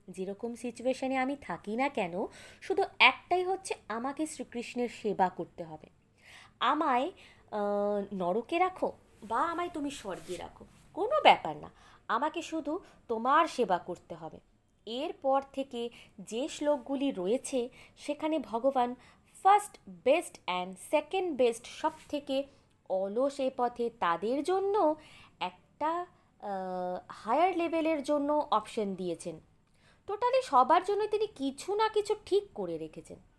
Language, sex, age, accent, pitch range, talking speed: Bengali, female, 20-39, native, 200-300 Hz, 120 wpm